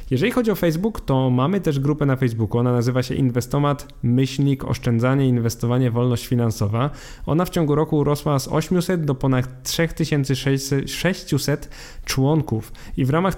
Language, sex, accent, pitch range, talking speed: Polish, male, native, 120-145 Hz, 150 wpm